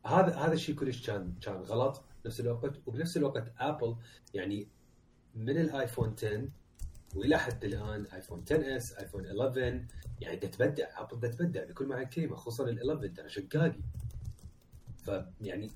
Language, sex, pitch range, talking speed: Arabic, male, 100-135 Hz, 135 wpm